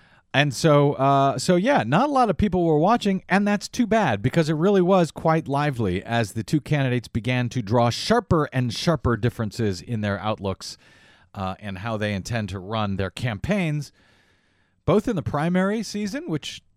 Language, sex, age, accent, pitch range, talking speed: English, male, 40-59, American, 120-180 Hz, 185 wpm